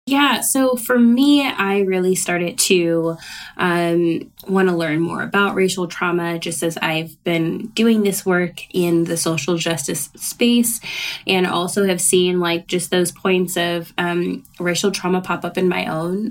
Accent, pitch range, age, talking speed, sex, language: American, 170-200 Hz, 10-29, 160 wpm, female, English